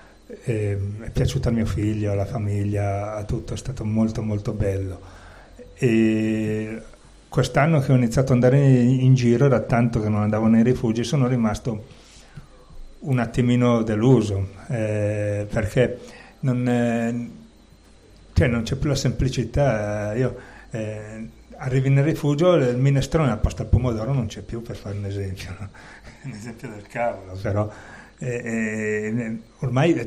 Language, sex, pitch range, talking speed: Italian, male, 105-125 Hz, 140 wpm